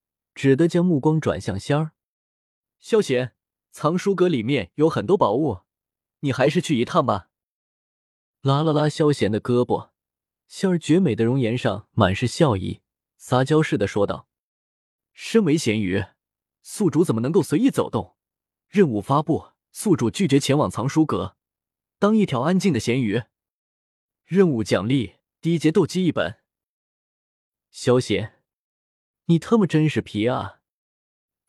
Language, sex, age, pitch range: Chinese, male, 20-39, 105-155 Hz